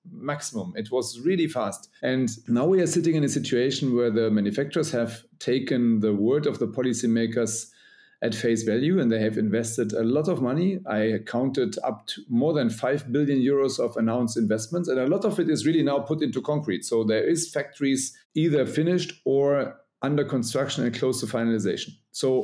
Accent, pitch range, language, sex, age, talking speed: German, 115-150 Hz, English, male, 40-59, 190 wpm